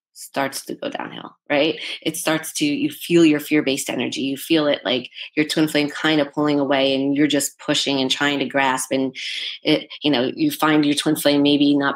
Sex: female